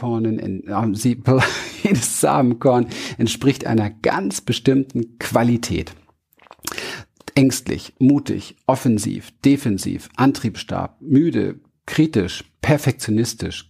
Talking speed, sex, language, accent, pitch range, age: 65 wpm, male, German, German, 100-135 Hz, 50-69